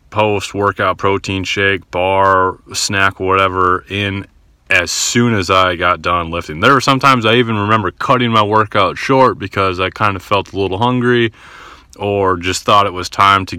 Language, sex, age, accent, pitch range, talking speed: English, male, 30-49, American, 85-100 Hz, 170 wpm